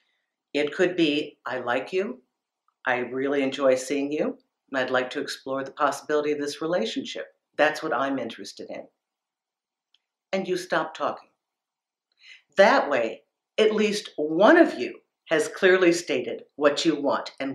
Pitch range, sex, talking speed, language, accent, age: 140-175 Hz, female, 150 wpm, English, American, 50-69